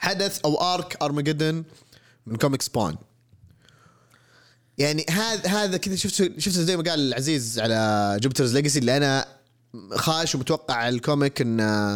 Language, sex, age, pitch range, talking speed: Arabic, male, 20-39, 120-165 Hz, 130 wpm